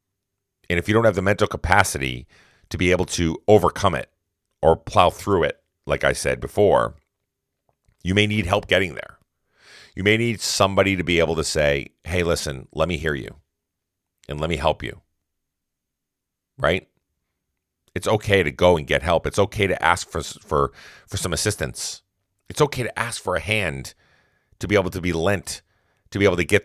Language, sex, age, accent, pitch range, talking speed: English, male, 40-59, American, 80-100 Hz, 185 wpm